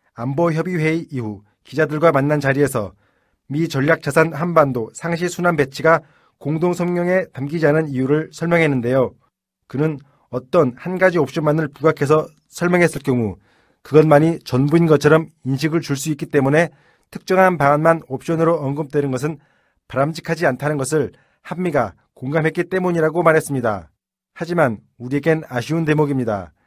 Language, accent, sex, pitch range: Korean, native, male, 135-165 Hz